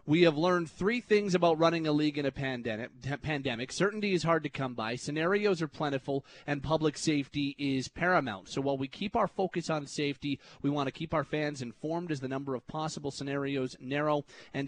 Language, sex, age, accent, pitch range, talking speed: English, male, 30-49, American, 135-165 Hz, 200 wpm